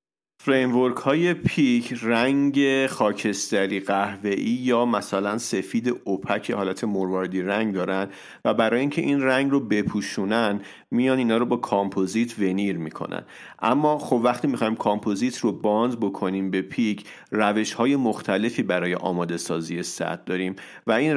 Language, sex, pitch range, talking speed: English, male, 95-120 Hz, 135 wpm